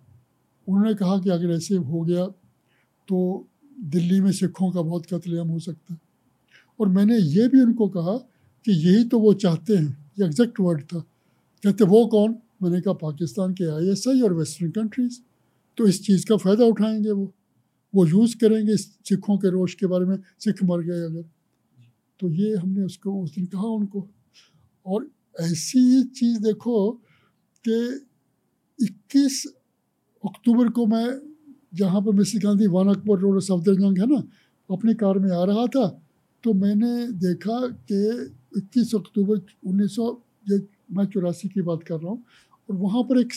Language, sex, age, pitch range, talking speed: Hindi, male, 60-79, 180-225 Hz, 165 wpm